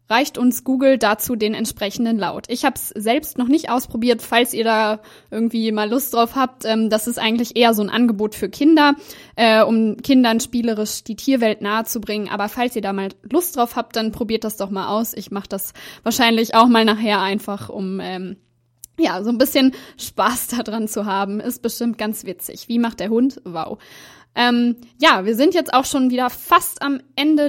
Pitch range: 215-255 Hz